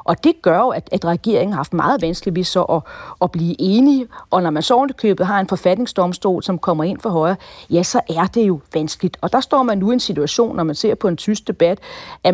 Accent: native